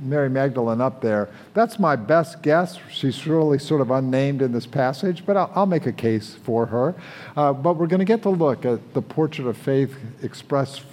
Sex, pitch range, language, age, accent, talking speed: male, 130-165 Hz, English, 50-69, American, 210 wpm